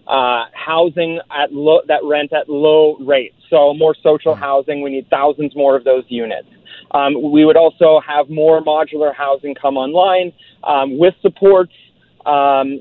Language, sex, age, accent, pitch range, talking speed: English, male, 30-49, American, 140-160 Hz, 160 wpm